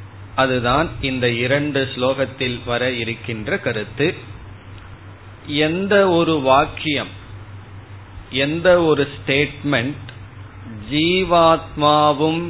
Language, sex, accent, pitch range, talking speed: Tamil, male, native, 110-140 Hz, 65 wpm